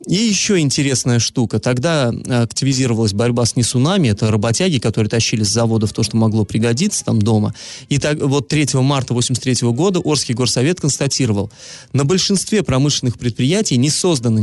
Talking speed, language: 150 wpm, Russian